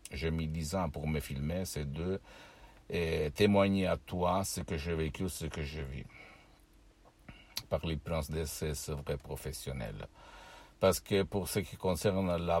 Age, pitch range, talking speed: 60-79, 80-95 Hz, 160 wpm